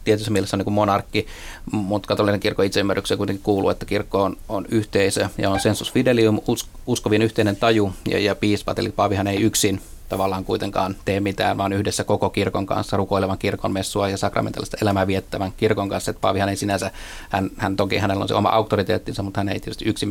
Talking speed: 195 wpm